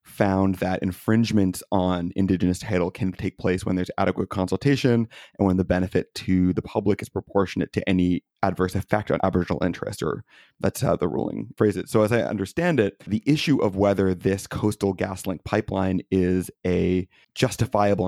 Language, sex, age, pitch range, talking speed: English, male, 30-49, 90-105 Hz, 175 wpm